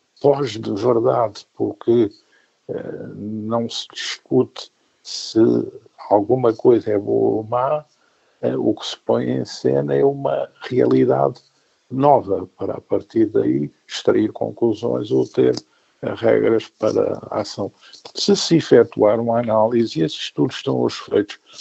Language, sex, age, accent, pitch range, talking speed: Portuguese, male, 50-69, Brazilian, 105-125 Hz, 135 wpm